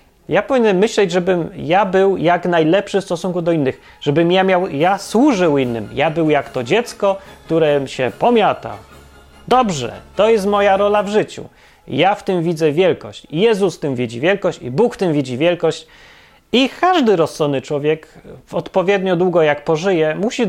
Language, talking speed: Polish, 170 wpm